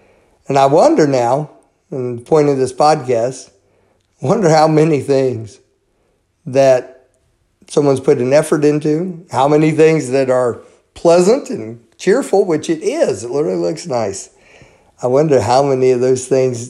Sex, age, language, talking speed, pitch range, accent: male, 50-69, English, 155 wpm, 120-150 Hz, American